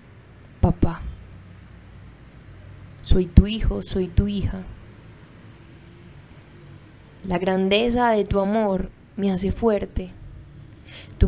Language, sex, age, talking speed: Spanish, female, 10-29, 85 wpm